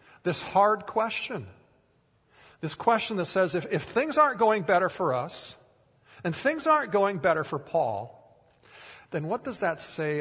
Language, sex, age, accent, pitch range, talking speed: English, male, 50-69, American, 135-185 Hz, 160 wpm